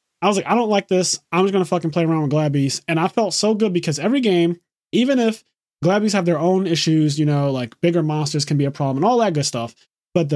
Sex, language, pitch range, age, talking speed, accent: male, English, 145-180 Hz, 20-39, 265 wpm, American